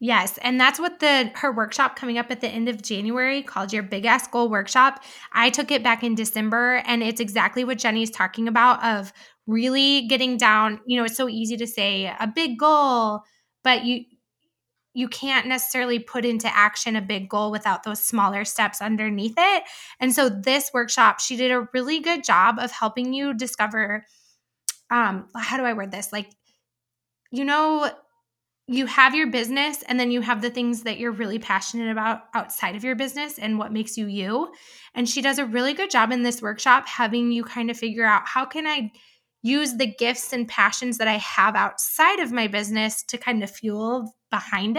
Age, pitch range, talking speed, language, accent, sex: 10-29, 220-255 Hz, 200 wpm, English, American, female